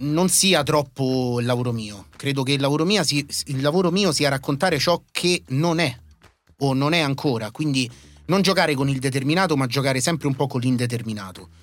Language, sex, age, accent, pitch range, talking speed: Italian, male, 30-49, native, 120-155 Hz, 190 wpm